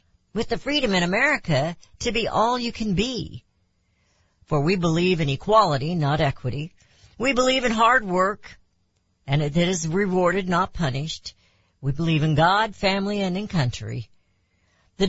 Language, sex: English, female